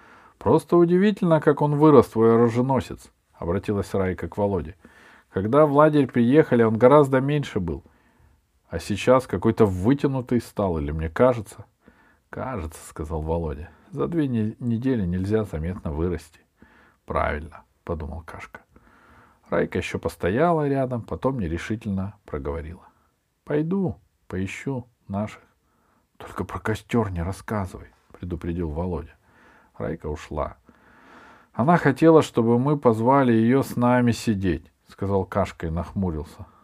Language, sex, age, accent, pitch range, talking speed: Russian, male, 50-69, native, 90-130 Hz, 135 wpm